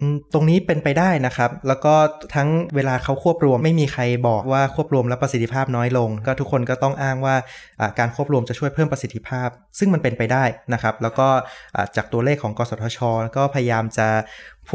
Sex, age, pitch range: male, 20-39, 115-140 Hz